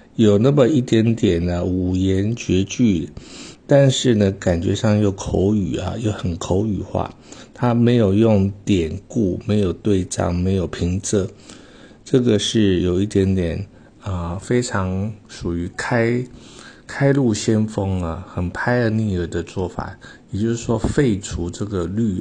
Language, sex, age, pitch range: Chinese, male, 50-69, 95-115 Hz